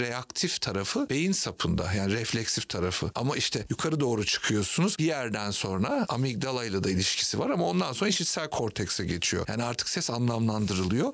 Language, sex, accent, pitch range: Turkish, male, native, 115-155 Hz